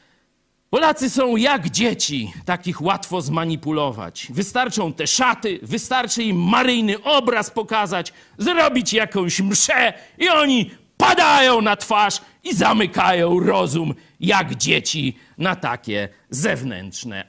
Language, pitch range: Polish, 140-235 Hz